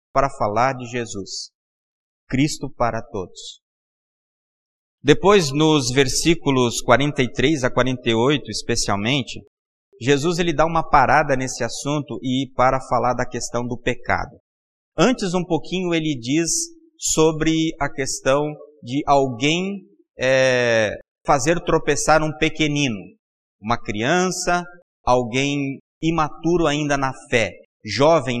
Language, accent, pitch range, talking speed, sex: Portuguese, Brazilian, 130-170 Hz, 105 wpm, male